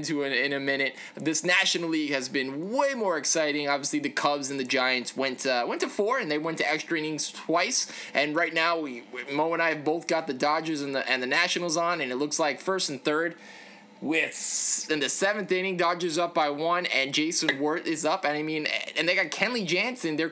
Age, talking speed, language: 20-39, 230 wpm, English